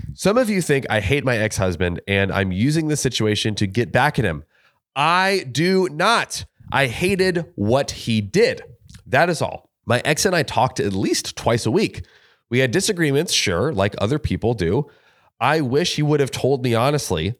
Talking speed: 190 wpm